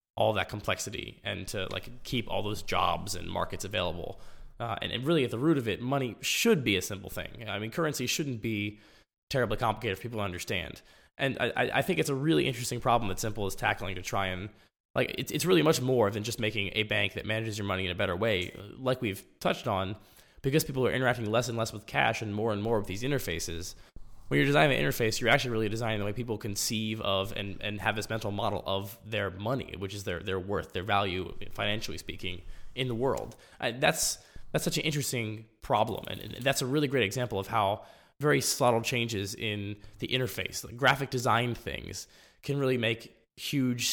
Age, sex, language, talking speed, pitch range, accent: 20-39, male, English, 215 wpm, 100-125 Hz, American